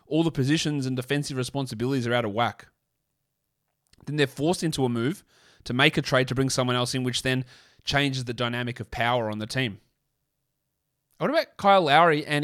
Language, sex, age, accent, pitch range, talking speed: English, male, 30-49, Australian, 115-145 Hz, 195 wpm